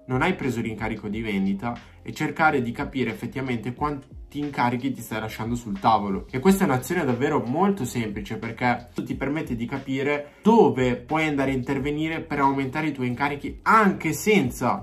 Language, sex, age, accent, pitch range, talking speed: Italian, male, 20-39, native, 110-140 Hz, 170 wpm